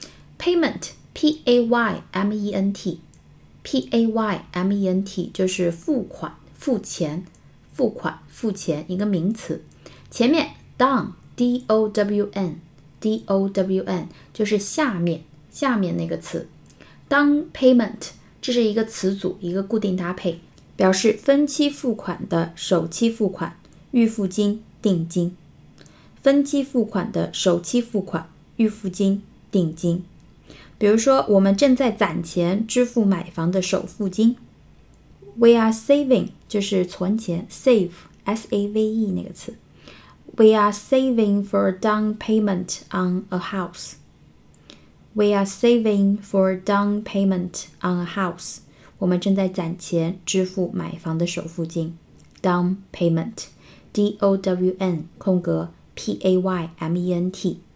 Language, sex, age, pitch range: Chinese, female, 20-39, 180-220 Hz